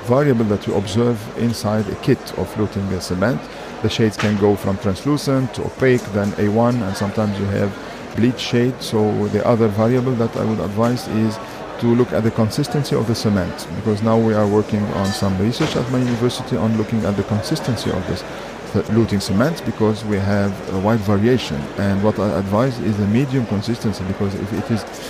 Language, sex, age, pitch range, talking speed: English, male, 50-69, 100-120 Hz, 195 wpm